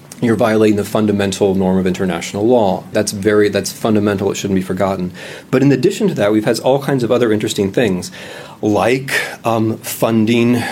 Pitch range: 95-115 Hz